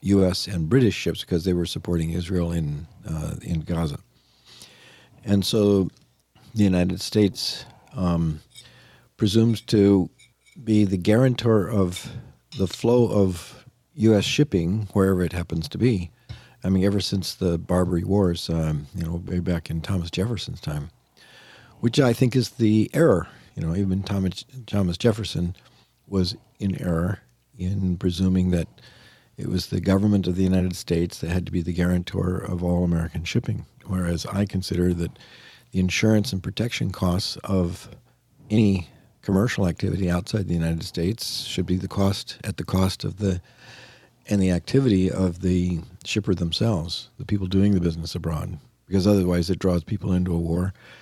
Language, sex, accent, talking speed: English, male, American, 155 wpm